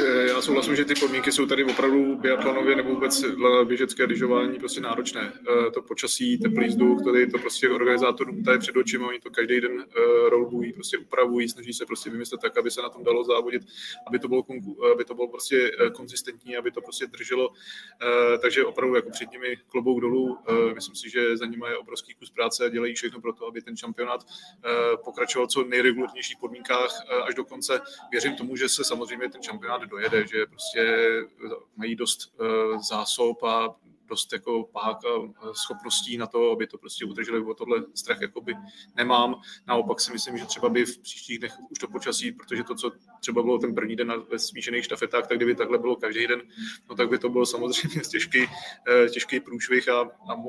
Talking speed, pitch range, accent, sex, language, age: 190 wpm, 120-160 Hz, native, male, Czech, 20-39